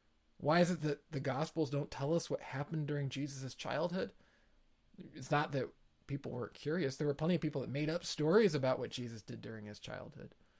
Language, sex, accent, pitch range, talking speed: English, male, American, 130-160 Hz, 205 wpm